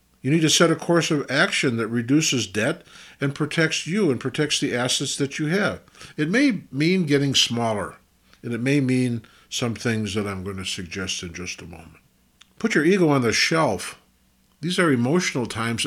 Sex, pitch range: male, 110-145 Hz